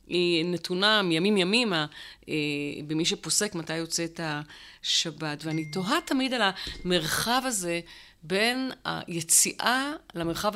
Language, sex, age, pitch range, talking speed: Hebrew, female, 30-49, 160-190 Hz, 100 wpm